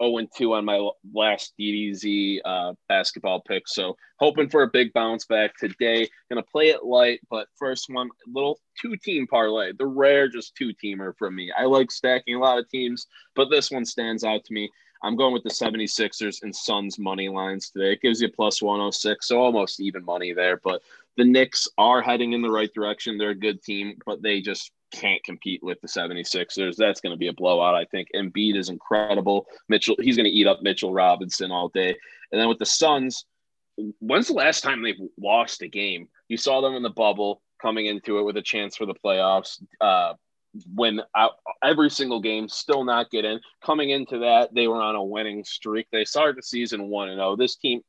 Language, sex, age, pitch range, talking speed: English, male, 20-39, 100-125 Hz, 210 wpm